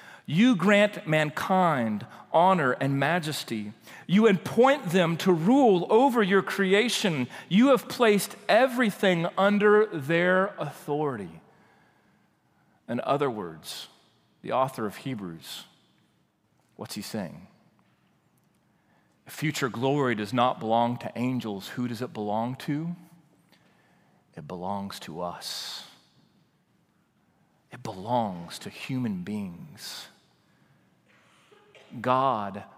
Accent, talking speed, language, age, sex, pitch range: American, 95 wpm, English, 40-59, male, 135-205 Hz